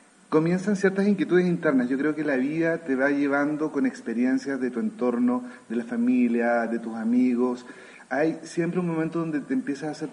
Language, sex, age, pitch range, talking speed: Spanish, male, 40-59, 125-180 Hz, 190 wpm